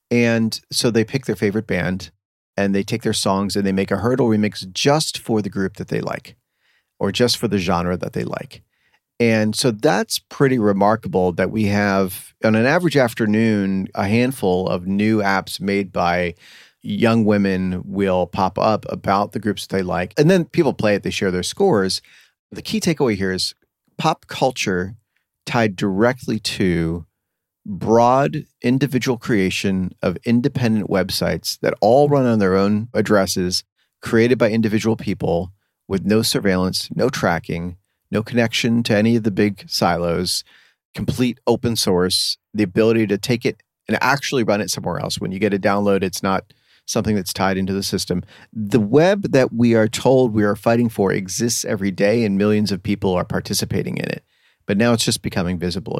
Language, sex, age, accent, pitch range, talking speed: English, male, 40-59, American, 95-120 Hz, 180 wpm